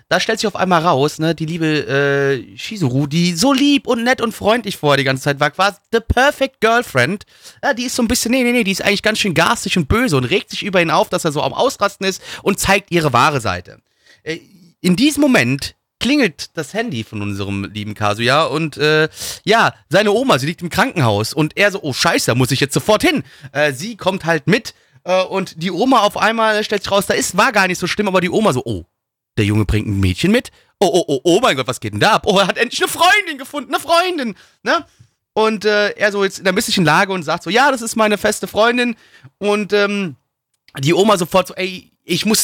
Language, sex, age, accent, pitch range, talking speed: German, male, 30-49, German, 150-210 Hz, 245 wpm